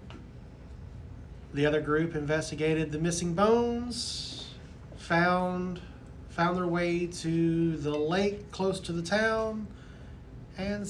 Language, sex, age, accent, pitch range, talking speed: English, male, 30-49, American, 105-170 Hz, 105 wpm